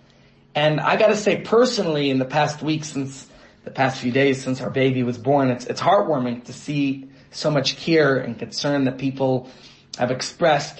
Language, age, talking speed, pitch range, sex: English, 30-49, 185 wpm, 135-195 Hz, male